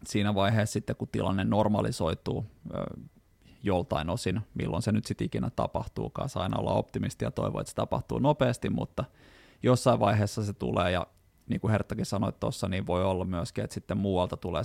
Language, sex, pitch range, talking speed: Finnish, male, 100-125 Hz, 175 wpm